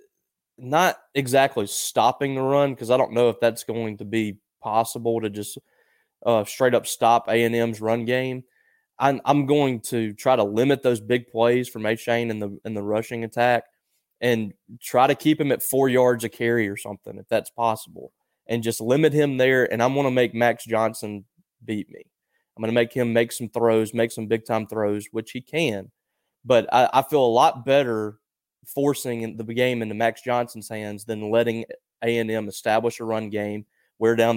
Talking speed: 190 wpm